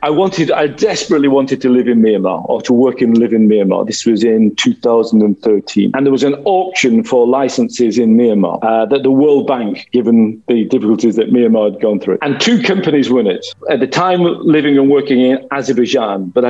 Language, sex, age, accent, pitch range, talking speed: Spanish, male, 40-59, British, 120-150 Hz, 205 wpm